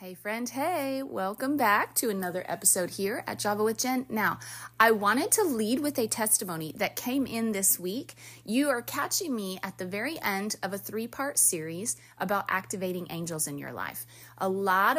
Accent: American